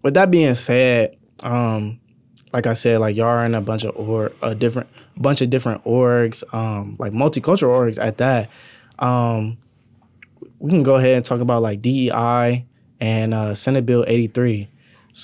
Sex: male